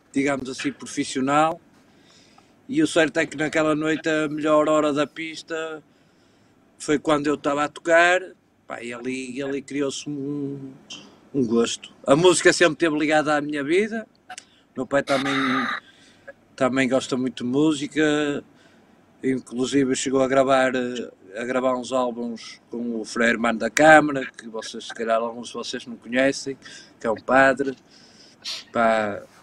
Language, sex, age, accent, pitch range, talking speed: Portuguese, male, 50-69, Portuguese, 130-150 Hz, 145 wpm